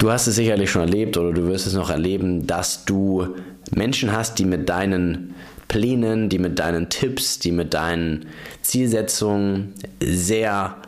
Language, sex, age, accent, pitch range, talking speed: German, male, 20-39, German, 90-115 Hz, 160 wpm